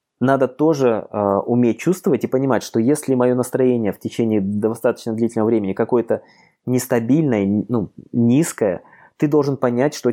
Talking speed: 140 wpm